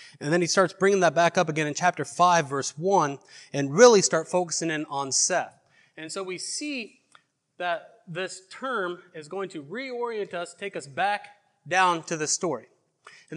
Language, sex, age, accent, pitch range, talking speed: English, male, 30-49, American, 155-200 Hz, 185 wpm